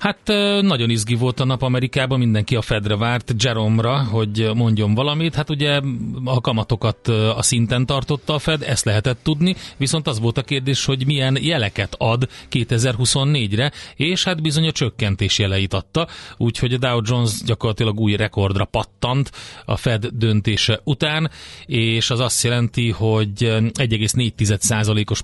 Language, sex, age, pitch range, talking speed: Hungarian, male, 30-49, 110-135 Hz, 145 wpm